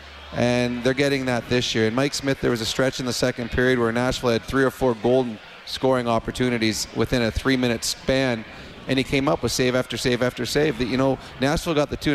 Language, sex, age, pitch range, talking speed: English, male, 30-49, 120-135 Hz, 235 wpm